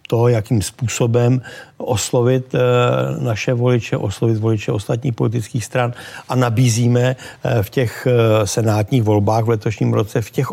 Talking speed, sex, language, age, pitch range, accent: 125 wpm, male, Czech, 60-79, 110-125 Hz, native